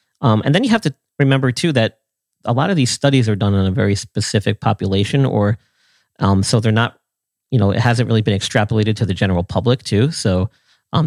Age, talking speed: 40-59, 215 wpm